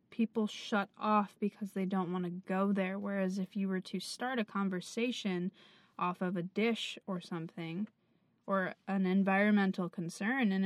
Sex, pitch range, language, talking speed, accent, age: female, 185-210 Hz, English, 165 wpm, American, 20-39